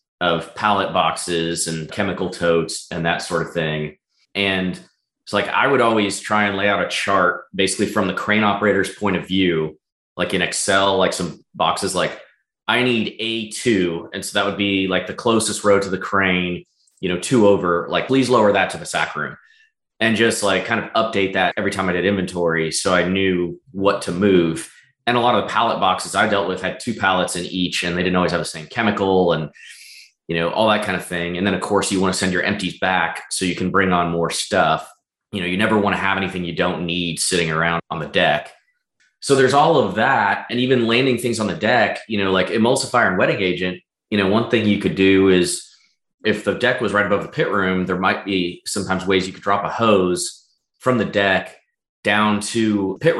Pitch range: 90-105 Hz